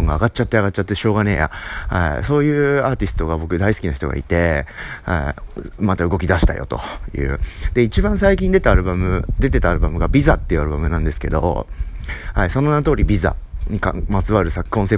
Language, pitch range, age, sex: Japanese, 80-120 Hz, 30-49, male